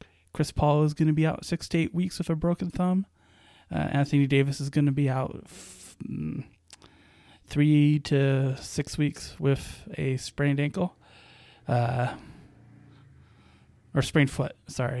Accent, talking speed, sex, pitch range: American, 150 wpm, male, 130-160 Hz